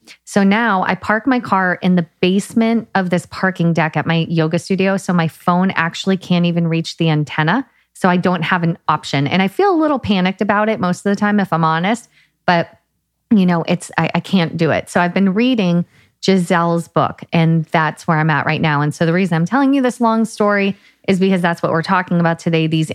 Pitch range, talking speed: 160-200 Hz, 230 wpm